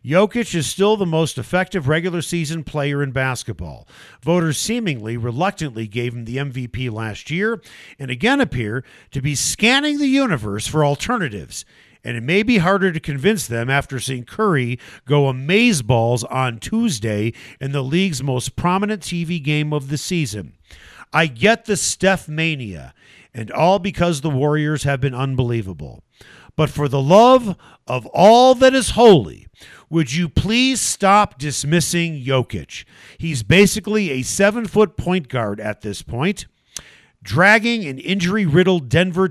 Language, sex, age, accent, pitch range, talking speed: English, male, 50-69, American, 130-190 Hz, 145 wpm